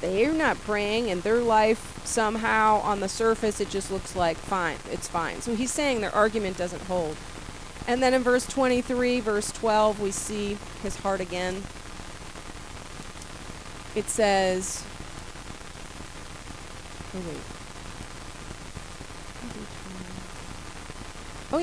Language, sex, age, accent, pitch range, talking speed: English, female, 40-59, American, 200-275 Hz, 110 wpm